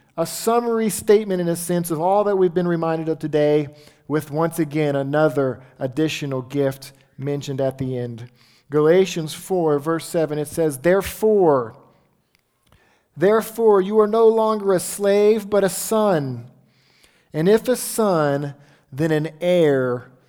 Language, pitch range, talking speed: English, 150-195 Hz, 140 wpm